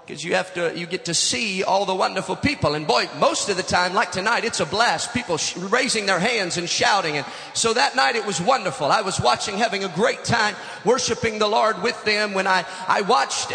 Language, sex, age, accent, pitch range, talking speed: English, male, 40-59, American, 185-235 Hz, 230 wpm